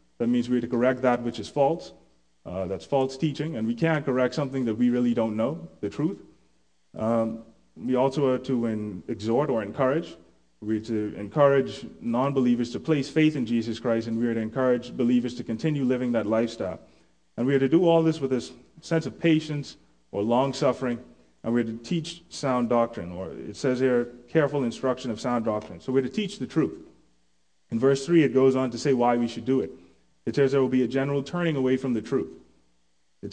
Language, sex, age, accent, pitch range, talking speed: English, male, 30-49, American, 110-135 Hz, 215 wpm